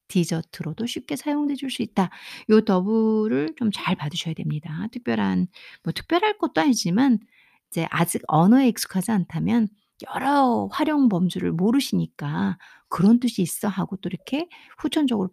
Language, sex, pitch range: Korean, female, 180-250 Hz